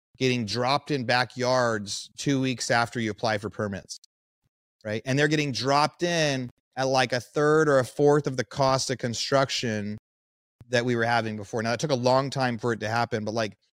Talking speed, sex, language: 200 wpm, male, English